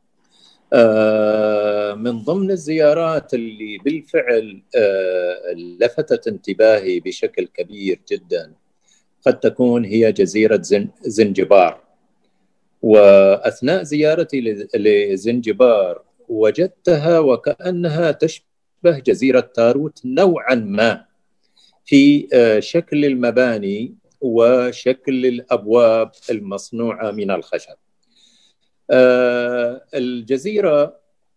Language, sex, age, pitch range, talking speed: Arabic, male, 50-69, 120-190 Hz, 65 wpm